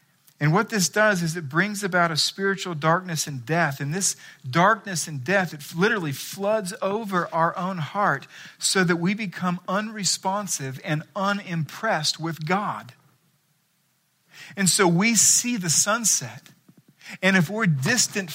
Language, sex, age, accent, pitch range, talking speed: English, male, 40-59, American, 160-215 Hz, 145 wpm